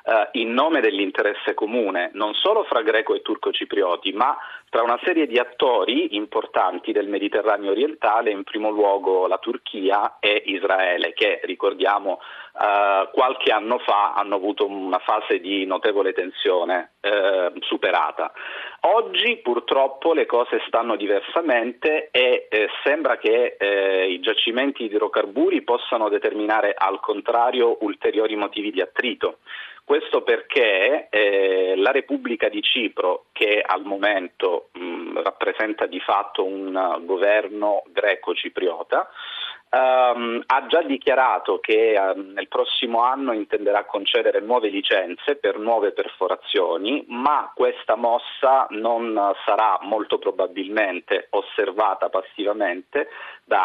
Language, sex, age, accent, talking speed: Italian, male, 40-59, native, 120 wpm